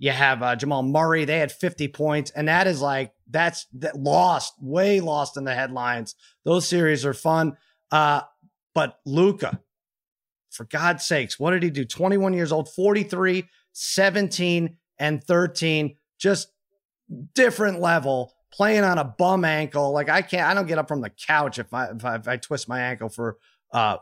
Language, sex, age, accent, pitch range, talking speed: English, male, 30-49, American, 145-200 Hz, 165 wpm